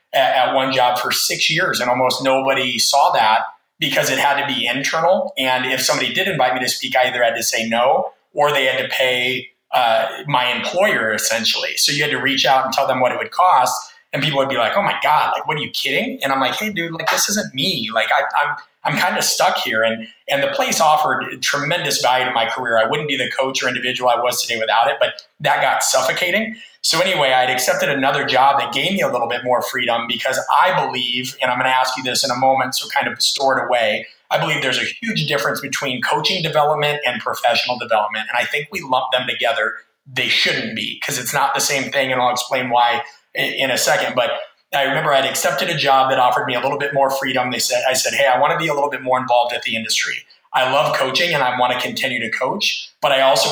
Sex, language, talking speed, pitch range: male, English, 245 wpm, 125-140 Hz